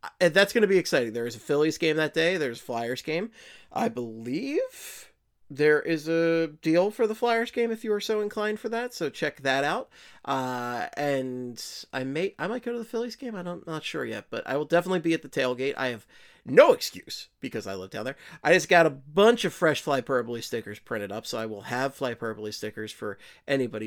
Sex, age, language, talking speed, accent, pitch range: male, 30-49, English, 230 wpm, American, 130-175 Hz